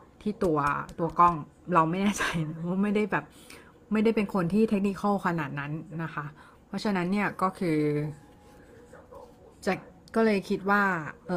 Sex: female